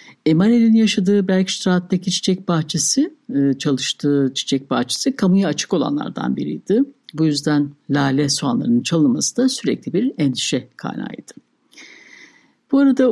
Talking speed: 110 wpm